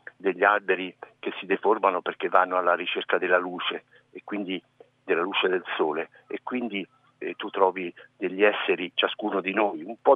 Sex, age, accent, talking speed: male, 50-69, native, 170 wpm